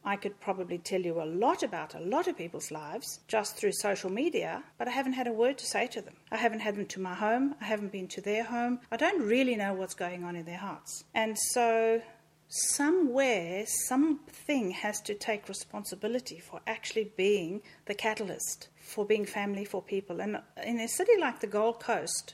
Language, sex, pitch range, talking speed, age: English, female, 195-245 Hz, 205 wpm, 40-59